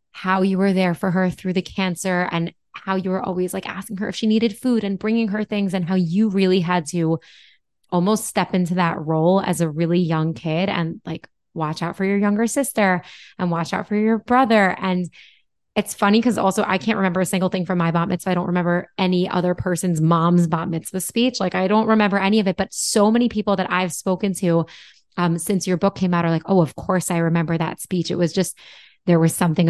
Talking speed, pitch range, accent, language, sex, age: 235 wpm, 170-195 Hz, American, English, female, 20-39